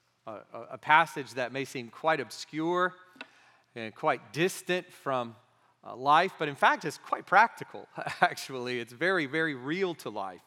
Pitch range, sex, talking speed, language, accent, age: 115-145 Hz, male, 145 wpm, English, American, 40-59